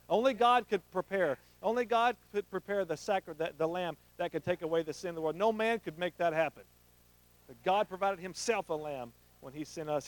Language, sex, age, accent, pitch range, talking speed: English, male, 50-69, American, 140-220 Hz, 225 wpm